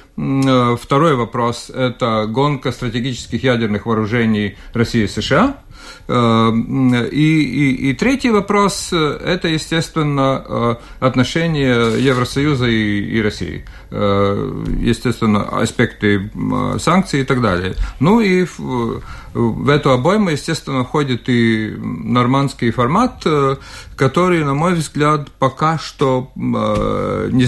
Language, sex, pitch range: Russian, male, 110-145 Hz